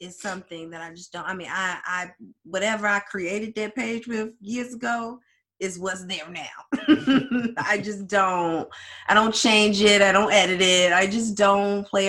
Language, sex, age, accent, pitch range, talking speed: English, female, 20-39, American, 180-220 Hz, 185 wpm